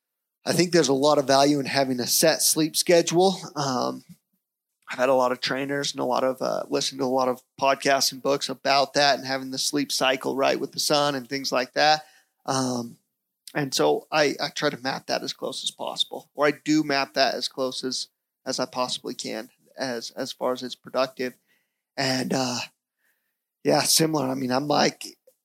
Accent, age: American, 30-49